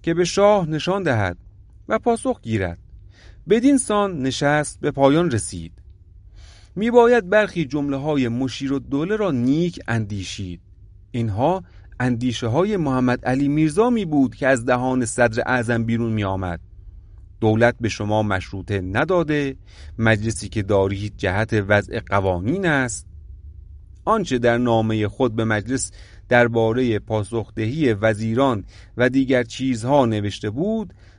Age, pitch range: 40-59, 100-165 Hz